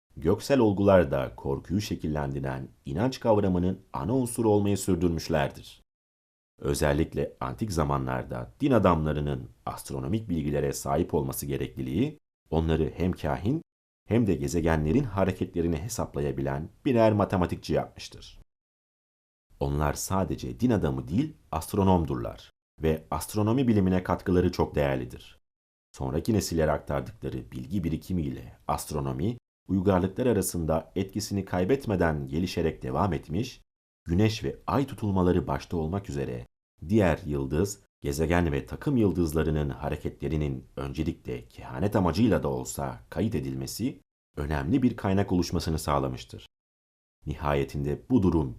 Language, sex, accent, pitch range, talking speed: Turkish, male, native, 70-100 Hz, 105 wpm